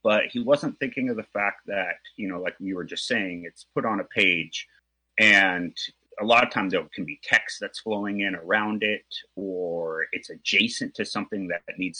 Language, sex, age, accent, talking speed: English, male, 30-49, American, 205 wpm